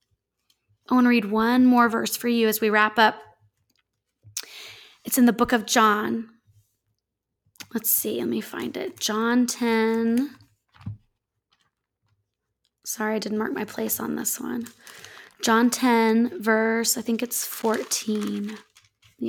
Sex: female